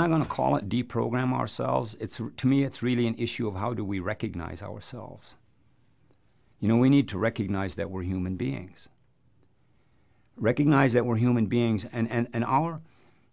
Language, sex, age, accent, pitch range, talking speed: English, male, 50-69, American, 105-125 Hz, 180 wpm